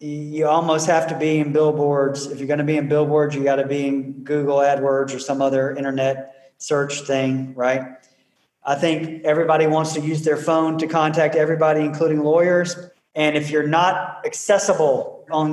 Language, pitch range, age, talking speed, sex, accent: English, 150-195 Hz, 40-59, 175 wpm, male, American